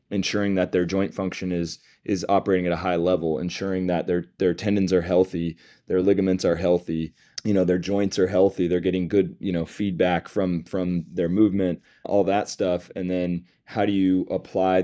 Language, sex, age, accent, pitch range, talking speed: English, male, 20-39, American, 85-95 Hz, 195 wpm